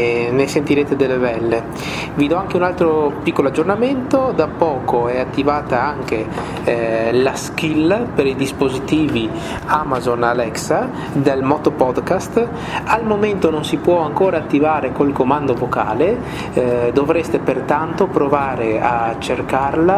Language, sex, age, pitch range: Italian, male, 30-49, 125-155 Hz